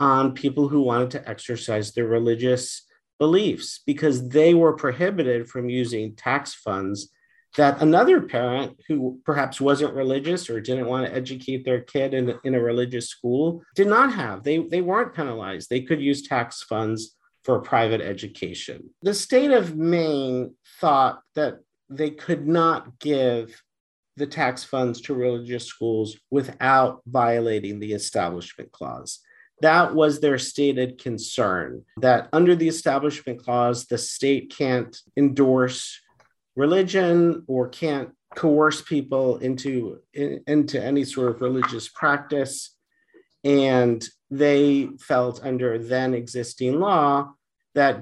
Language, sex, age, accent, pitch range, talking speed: English, male, 50-69, American, 120-155 Hz, 135 wpm